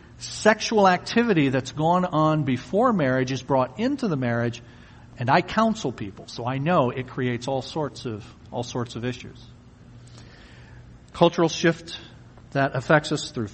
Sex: male